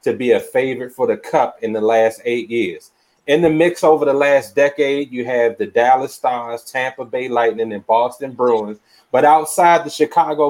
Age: 30-49